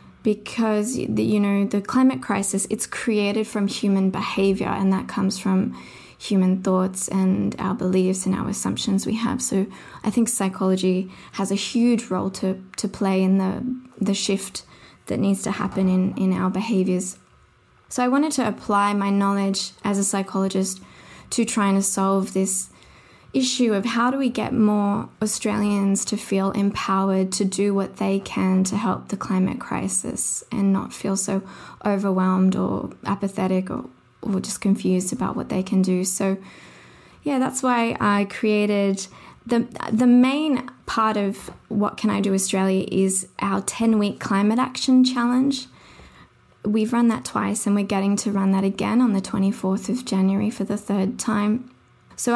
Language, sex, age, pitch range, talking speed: English, female, 20-39, 195-220 Hz, 165 wpm